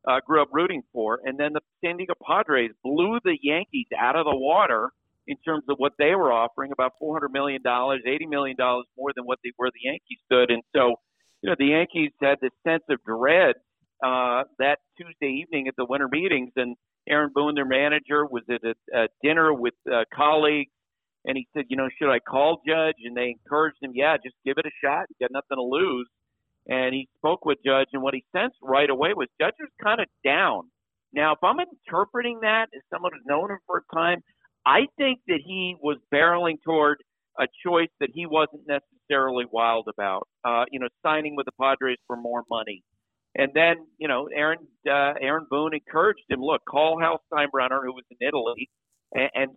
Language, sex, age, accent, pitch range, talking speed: English, male, 50-69, American, 130-160 Hz, 205 wpm